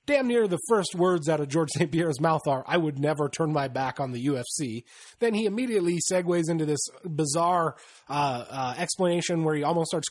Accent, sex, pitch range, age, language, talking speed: American, male, 140-180 Hz, 30-49, English, 210 wpm